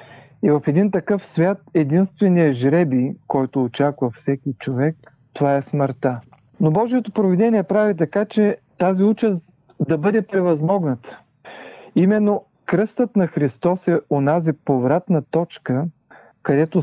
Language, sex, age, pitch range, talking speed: Bulgarian, male, 40-59, 140-175 Hz, 120 wpm